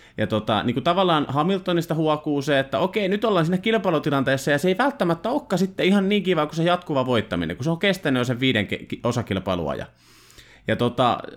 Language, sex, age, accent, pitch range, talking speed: Finnish, male, 30-49, native, 115-165 Hz, 195 wpm